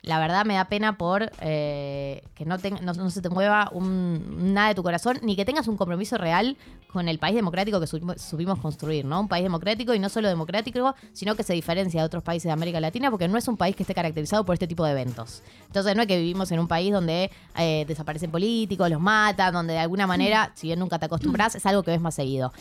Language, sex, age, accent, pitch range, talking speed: Spanish, female, 20-39, Argentinian, 165-205 Hz, 245 wpm